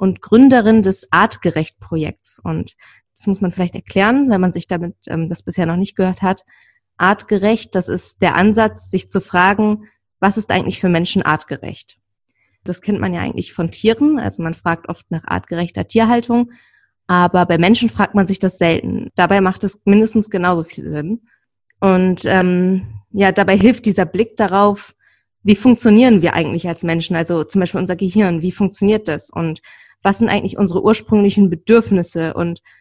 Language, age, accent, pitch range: German, 20-39, German, 175-205 Hz